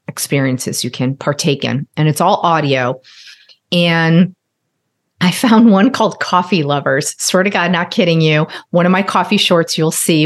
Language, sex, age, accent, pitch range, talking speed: English, female, 40-59, American, 150-180 Hz, 180 wpm